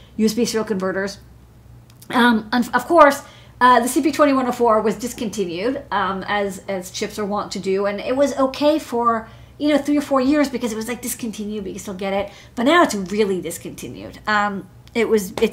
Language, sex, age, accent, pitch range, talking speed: English, female, 40-59, American, 190-235 Hz, 195 wpm